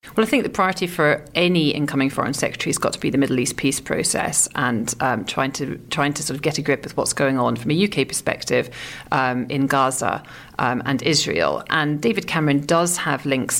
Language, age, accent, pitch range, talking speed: English, 40-59, British, 135-165 Hz, 220 wpm